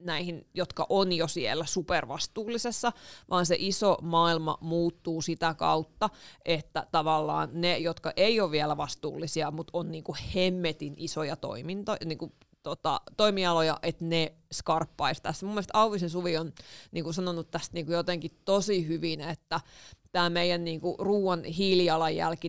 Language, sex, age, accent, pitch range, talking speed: Finnish, female, 30-49, native, 160-180 Hz, 130 wpm